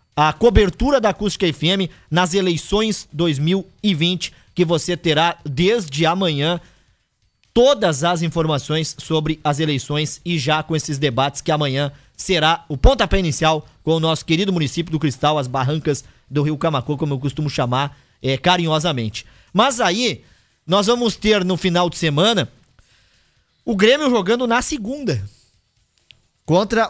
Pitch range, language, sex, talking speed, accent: 155-220 Hz, Portuguese, male, 140 wpm, Brazilian